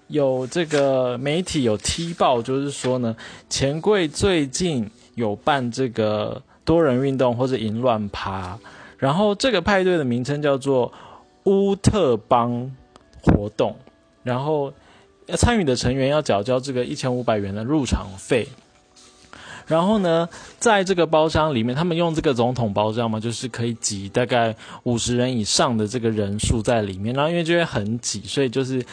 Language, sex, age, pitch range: Chinese, male, 20-39, 110-140 Hz